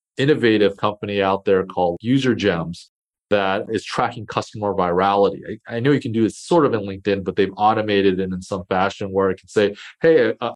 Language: English